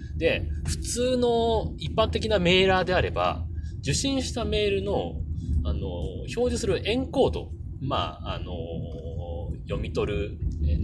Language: Japanese